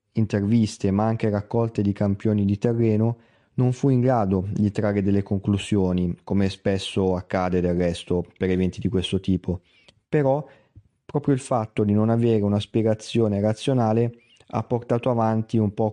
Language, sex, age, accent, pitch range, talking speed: Italian, male, 30-49, native, 100-115 Hz, 155 wpm